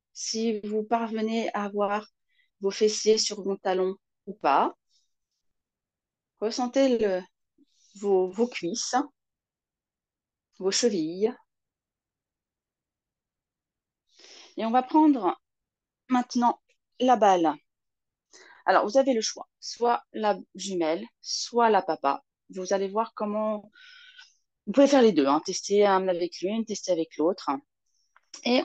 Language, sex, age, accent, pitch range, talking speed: French, female, 30-49, French, 195-270 Hz, 115 wpm